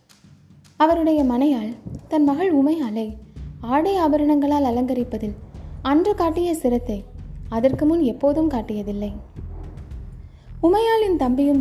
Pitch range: 230-305 Hz